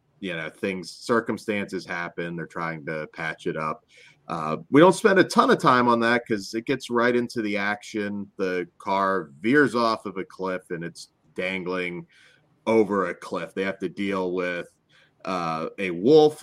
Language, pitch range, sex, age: English, 95-130 Hz, male, 30-49